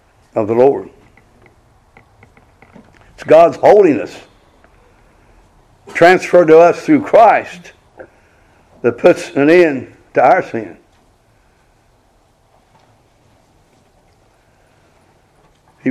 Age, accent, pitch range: 60-79, American, 115-155 Hz